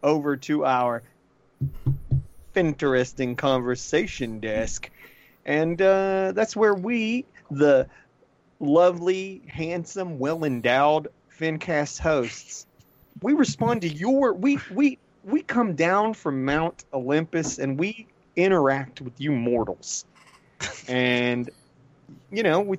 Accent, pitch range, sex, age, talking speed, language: American, 130-165 Hz, male, 30-49, 105 wpm, English